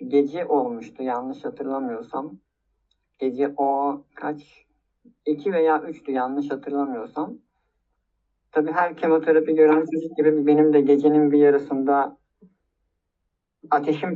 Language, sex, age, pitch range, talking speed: Turkish, male, 50-69, 140-170 Hz, 100 wpm